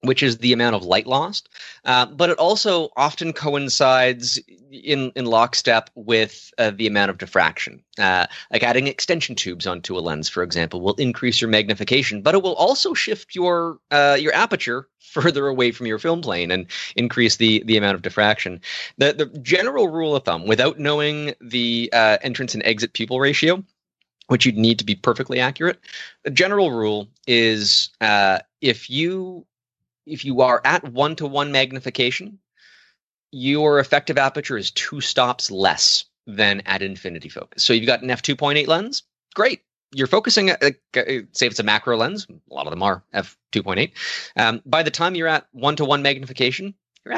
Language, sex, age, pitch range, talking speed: English, male, 30-49, 110-150 Hz, 170 wpm